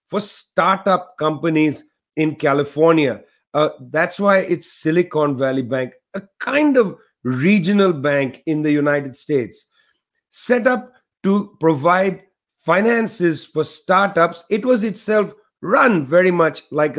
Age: 50-69